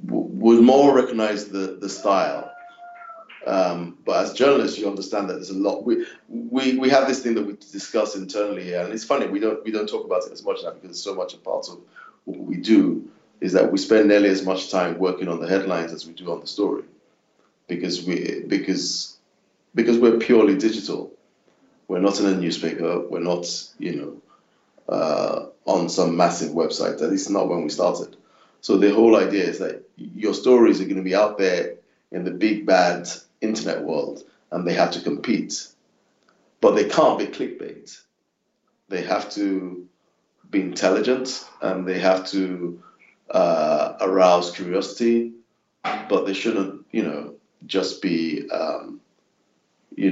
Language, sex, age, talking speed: English, male, 30-49, 175 wpm